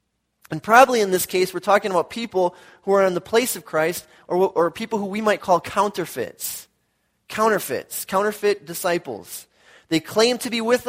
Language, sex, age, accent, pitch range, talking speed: English, male, 20-39, American, 180-225 Hz, 175 wpm